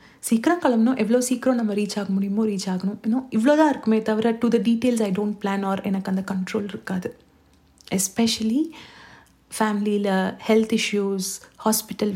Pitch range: 200-240 Hz